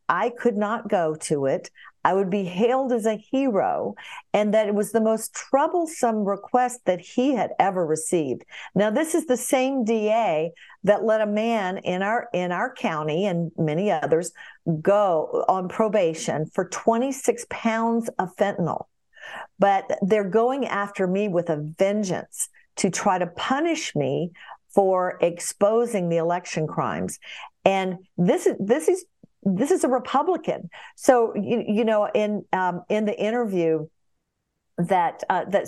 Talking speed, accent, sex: 155 wpm, American, female